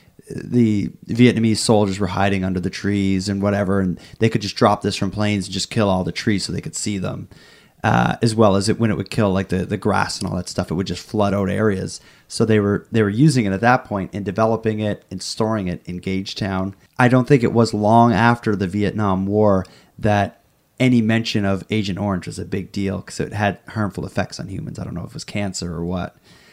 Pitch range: 100-120 Hz